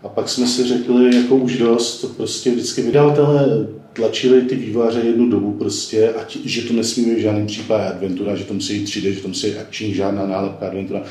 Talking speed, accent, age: 200 wpm, native, 40-59